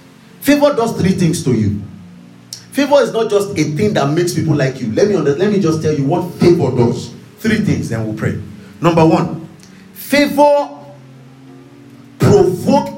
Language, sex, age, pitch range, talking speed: English, male, 40-59, 130-195 Hz, 170 wpm